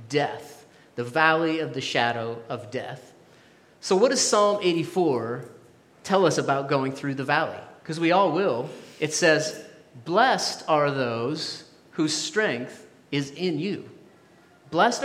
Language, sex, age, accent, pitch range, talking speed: English, male, 30-49, American, 150-195 Hz, 140 wpm